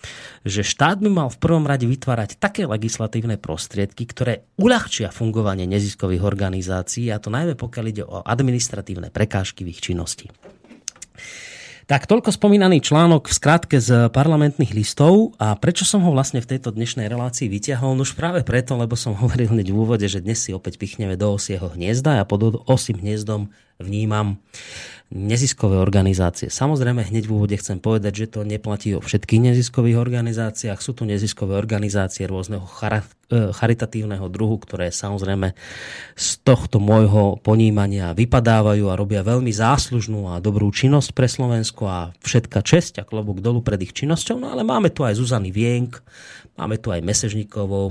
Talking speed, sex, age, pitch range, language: 165 wpm, male, 30-49, 100-130 Hz, Slovak